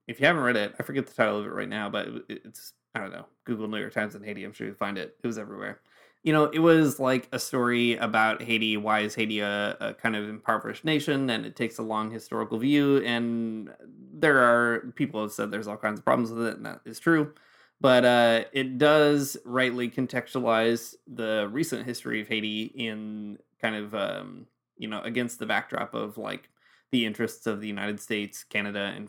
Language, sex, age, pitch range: English, male, 20-39, 110-120 Hz